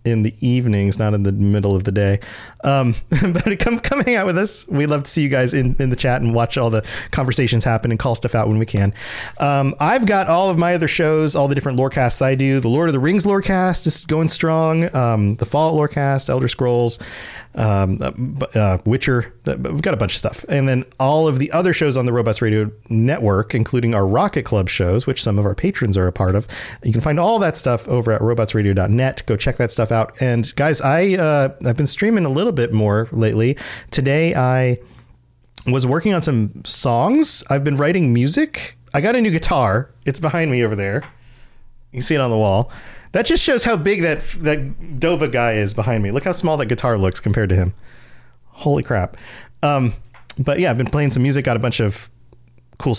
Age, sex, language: 40-59, male, English